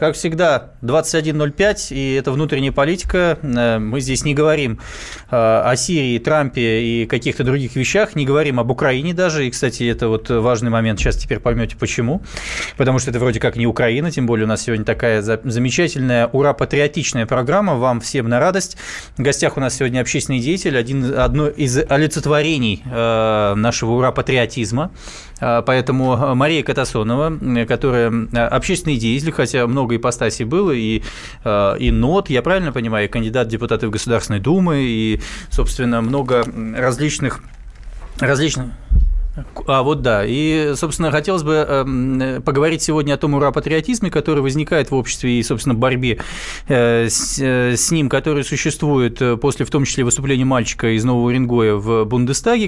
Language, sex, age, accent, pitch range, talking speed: Russian, male, 20-39, native, 120-150 Hz, 150 wpm